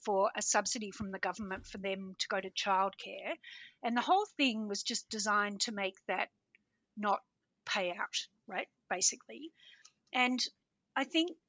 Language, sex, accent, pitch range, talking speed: English, female, Australian, 200-250 Hz, 155 wpm